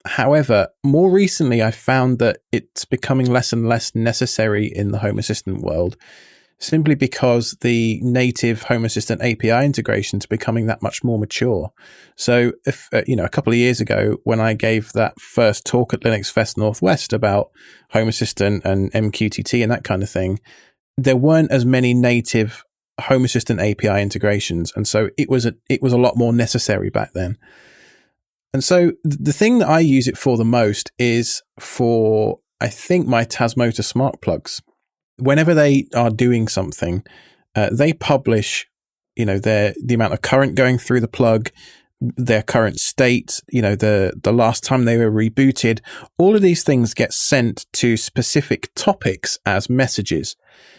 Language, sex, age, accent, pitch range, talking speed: English, male, 20-39, British, 110-130 Hz, 170 wpm